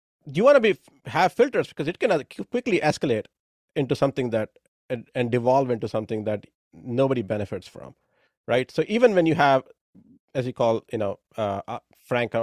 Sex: male